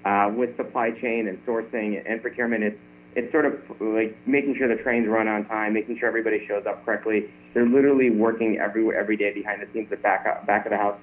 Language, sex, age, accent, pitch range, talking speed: English, male, 30-49, American, 100-115 Hz, 225 wpm